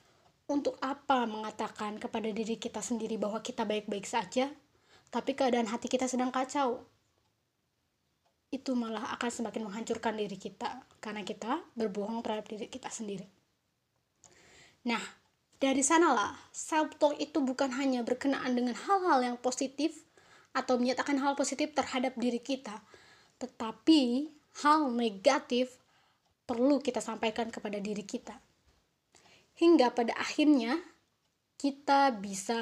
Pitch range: 225-280 Hz